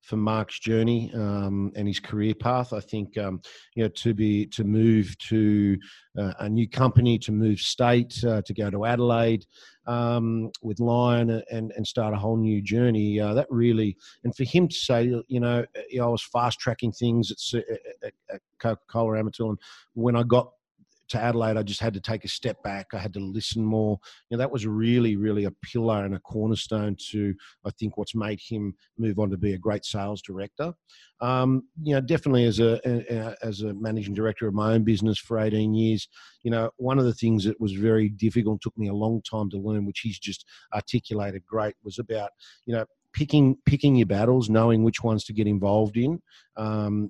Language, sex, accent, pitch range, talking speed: English, male, Australian, 105-120 Hz, 205 wpm